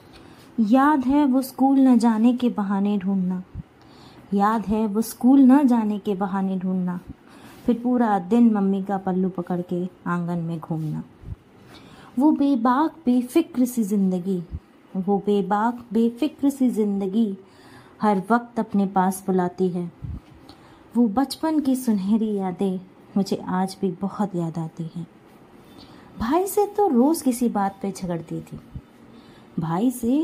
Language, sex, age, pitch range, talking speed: Hindi, female, 20-39, 195-260 Hz, 135 wpm